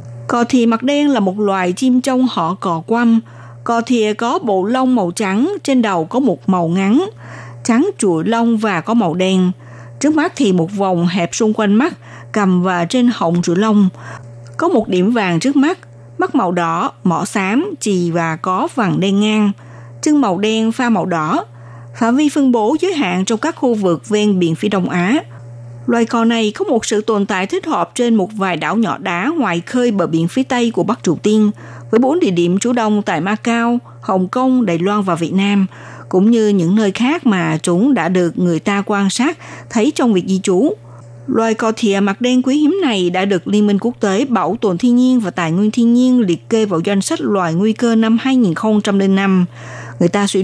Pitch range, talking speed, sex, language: 175-235 Hz, 215 wpm, female, Vietnamese